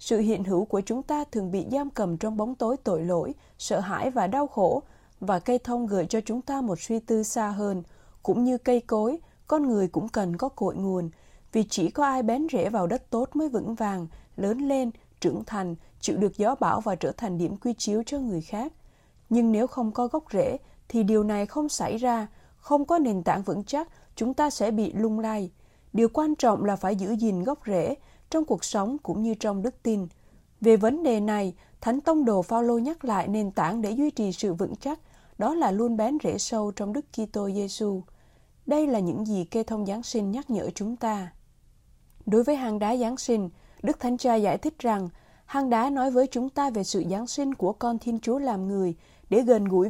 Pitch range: 200-255 Hz